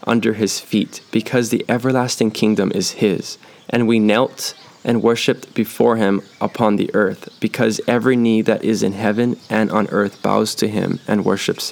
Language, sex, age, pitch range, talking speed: English, male, 10-29, 105-120 Hz, 175 wpm